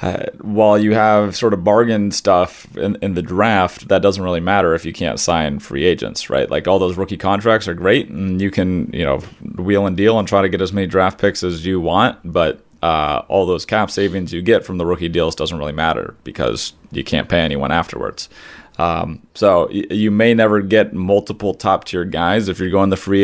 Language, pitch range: English, 85-100 Hz